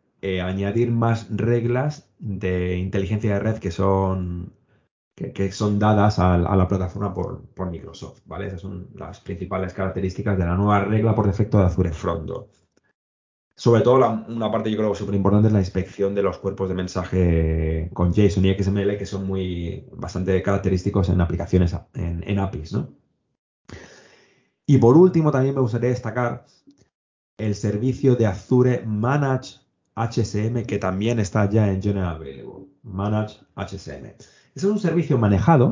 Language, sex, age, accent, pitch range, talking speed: Spanish, male, 20-39, Spanish, 95-115 Hz, 160 wpm